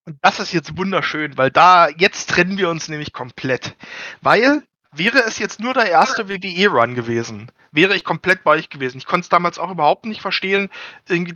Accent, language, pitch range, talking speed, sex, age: German, German, 145-185 Hz, 200 wpm, male, 60-79